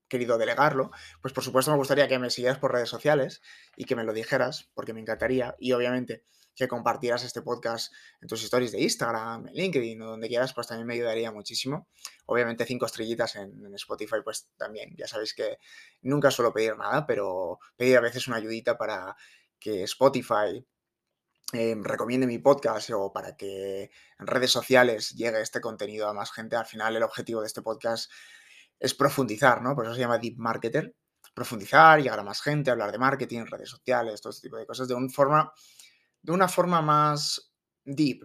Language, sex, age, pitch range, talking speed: Spanish, male, 20-39, 115-135 Hz, 185 wpm